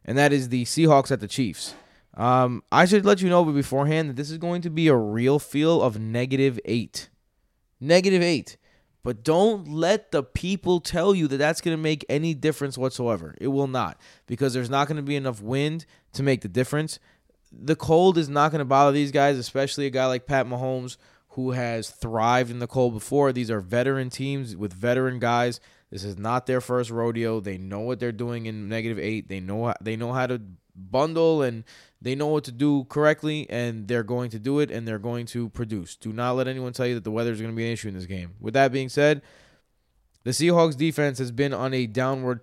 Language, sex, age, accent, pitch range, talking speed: English, male, 20-39, American, 115-145 Hz, 225 wpm